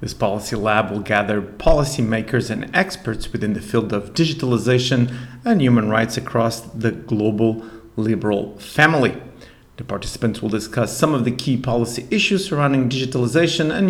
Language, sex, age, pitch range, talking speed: English, male, 40-59, 115-135 Hz, 145 wpm